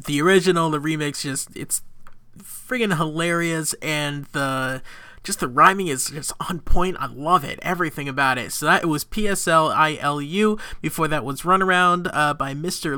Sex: male